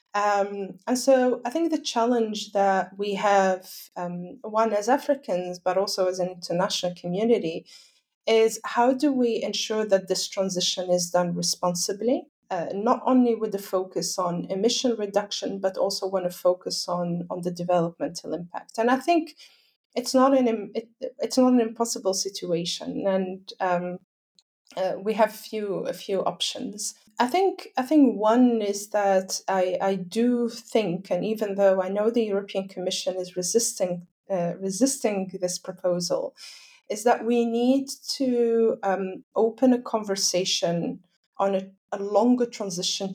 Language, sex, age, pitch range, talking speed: English, female, 20-39, 180-230 Hz, 155 wpm